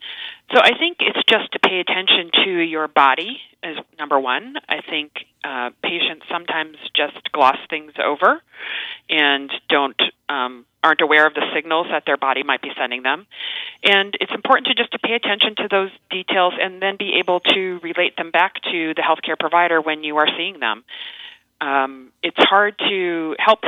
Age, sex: 40-59, female